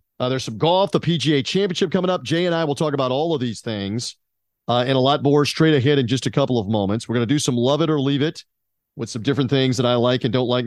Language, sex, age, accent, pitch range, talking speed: English, male, 40-59, American, 125-160 Hz, 290 wpm